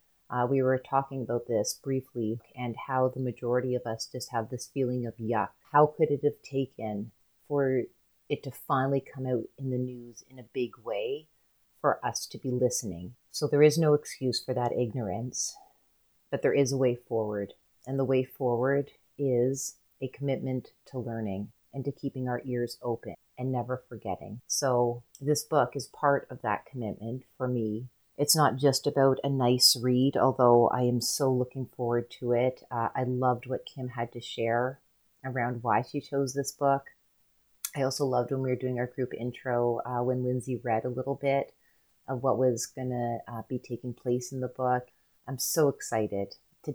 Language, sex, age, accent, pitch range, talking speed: English, female, 30-49, American, 120-135 Hz, 185 wpm